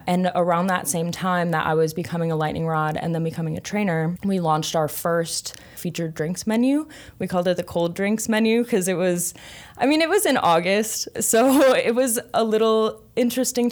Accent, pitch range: American, 150-180 Hz